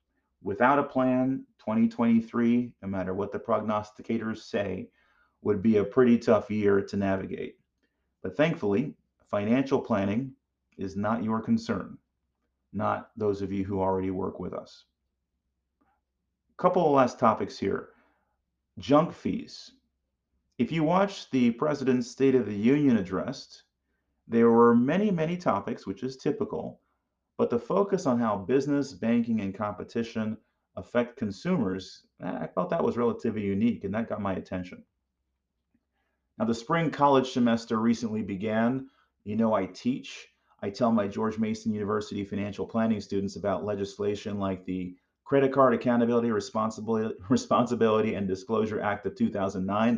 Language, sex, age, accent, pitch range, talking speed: English, male, 40-59, American, 95-130 Hz, 140 wpm